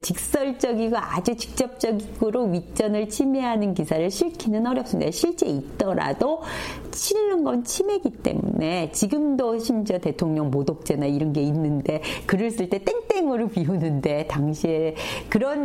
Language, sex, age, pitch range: Korean, female, 40-59, 160-265 Hz